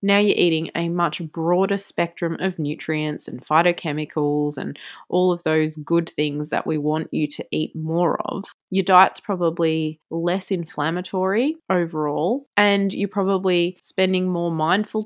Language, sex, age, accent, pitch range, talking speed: English, female, 20-39, Australian, 160-190 Hz, 145 wpm